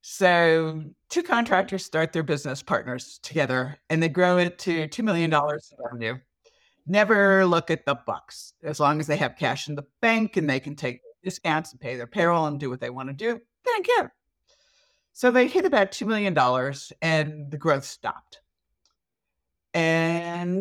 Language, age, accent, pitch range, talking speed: English, 50-69, American, 135-185 Hz, 175 wpm